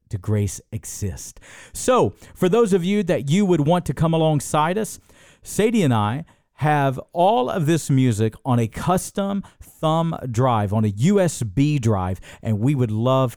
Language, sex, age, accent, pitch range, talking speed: English, male, 50-69, American, 105-145 Hz, 165 wpm